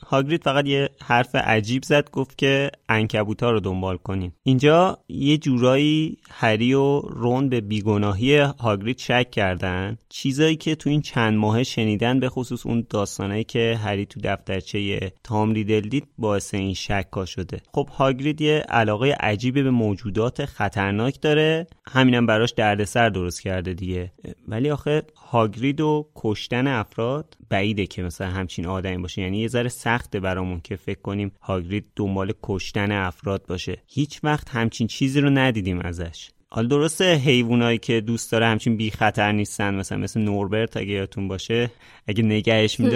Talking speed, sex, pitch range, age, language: 155 wpm, male, 100-130 Hz, 30-49, Persian